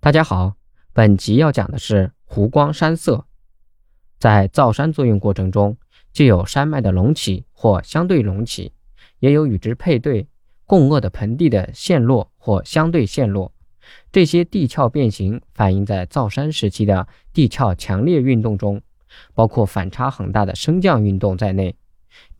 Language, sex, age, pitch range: Chinese, male, 20-39, 100-135 Hz